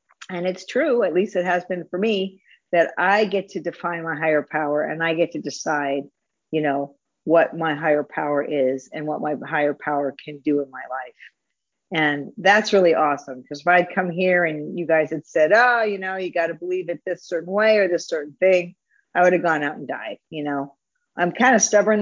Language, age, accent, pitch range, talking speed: English, 50-69, American, 160-205 Hz, 225 wpm